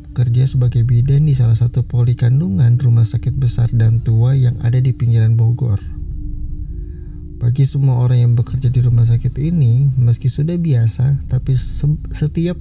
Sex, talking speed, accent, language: male, 155 wpm, native, Indonesian